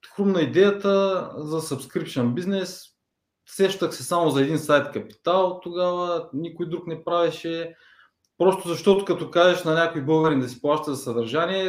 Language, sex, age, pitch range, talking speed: Bulgarian, male, 20-39, 155-195 Hz, 150 wpm